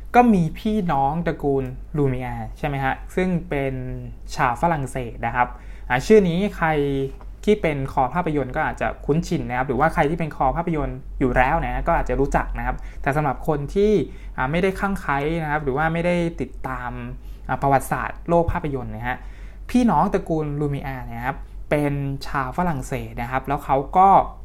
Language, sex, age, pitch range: Thai, male, 20-39, 125-165 Hz